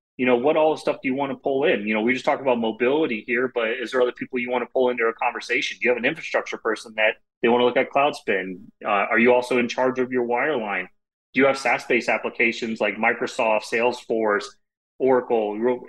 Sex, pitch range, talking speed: male, 115-135 Hz, 240 wpm